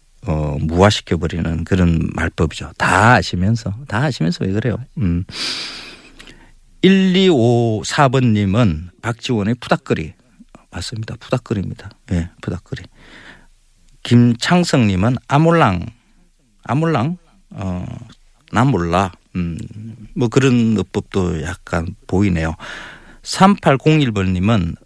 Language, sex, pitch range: Korean, male, 90-130 Hz